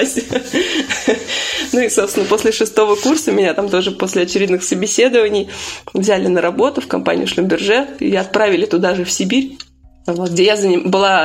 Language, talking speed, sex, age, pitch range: Russian, 145 wpm, female, 20-39, 185-270 Hz